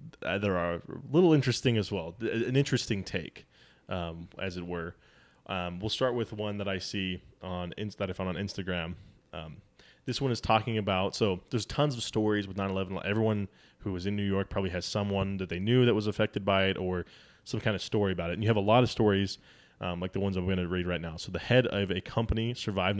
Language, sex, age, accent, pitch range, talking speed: English, male, 20-39, American, 95-115 Hz, 230 wpm